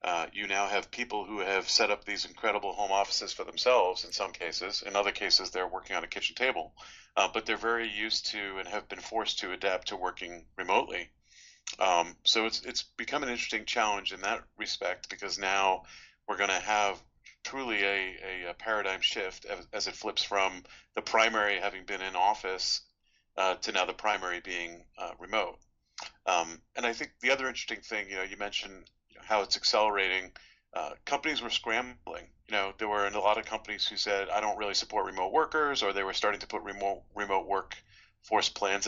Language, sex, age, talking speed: English, male, 40-59, 200 wpm